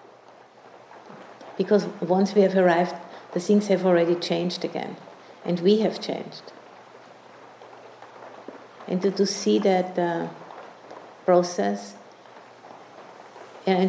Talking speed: 100 wpm